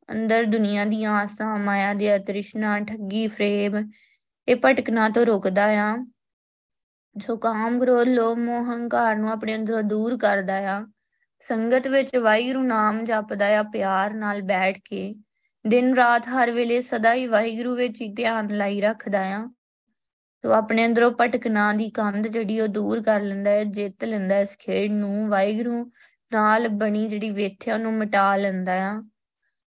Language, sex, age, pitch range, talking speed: Punjabi, female, 20-39, 205-240 Hz, 110 wpm